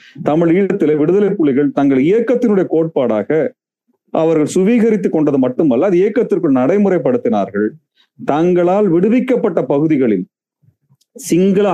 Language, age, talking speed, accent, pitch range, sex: Tamil, 40-59, 80 wpm, native, 145-210 Hz, male